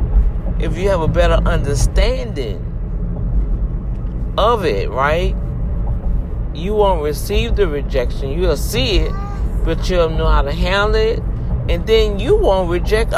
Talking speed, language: 130 wpm, English